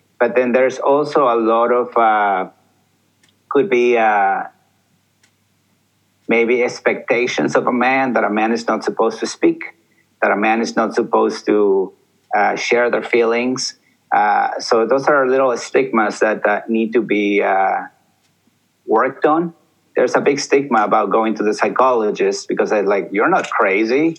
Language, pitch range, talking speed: English, 110-140 Hz, 160 wpm